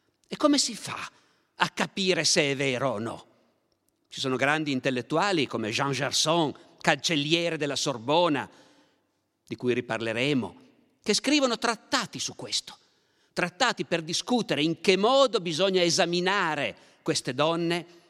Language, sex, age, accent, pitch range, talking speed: Italian, male, 50-69, native, 135-170 Hz, 130 wpm